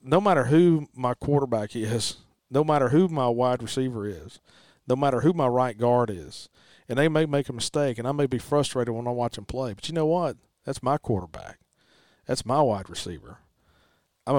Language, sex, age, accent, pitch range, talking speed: English, male, 40-59, American, 120-160 Hz, 200 wpm